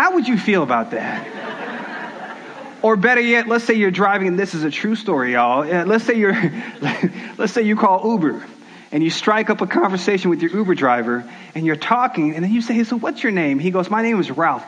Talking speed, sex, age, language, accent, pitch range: 225 wpm, male, 30-49, English, American, 185-230 Hz